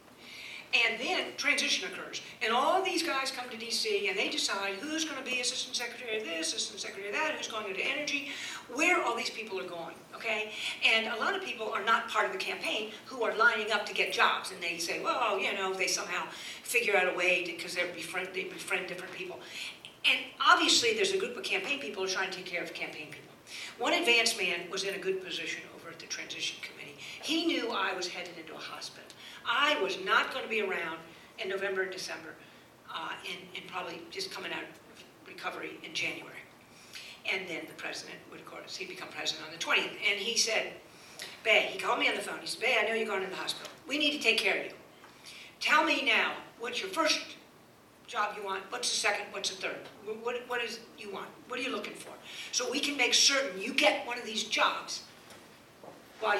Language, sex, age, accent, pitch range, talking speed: English, female, 50-69, American, 190-285 Hz, 220 wpm